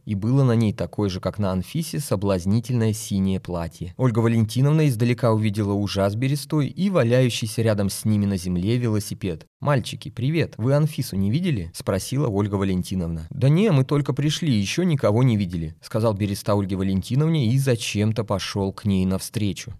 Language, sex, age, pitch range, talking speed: Russian, male, 20-39, 95-125 Hz, 170 wpm